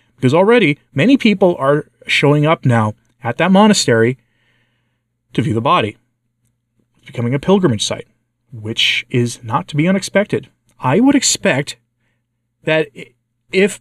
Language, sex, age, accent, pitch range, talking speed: English, male, 30-49, American, 115-135 Hz, 130 wpm